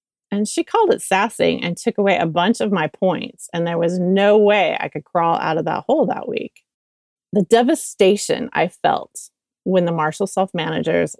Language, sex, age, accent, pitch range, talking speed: English, female, 30-49, American, 170-205 Hz, 190 wpm